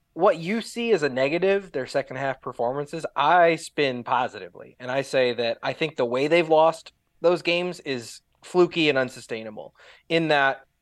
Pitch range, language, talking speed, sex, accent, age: 115-155 Hz, English, 170 wpm, male, American, 20-39